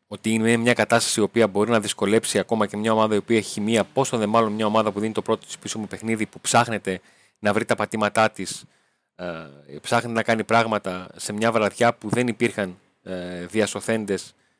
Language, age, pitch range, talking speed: Greek, 30-49, 95-115 Hz, 220 wpm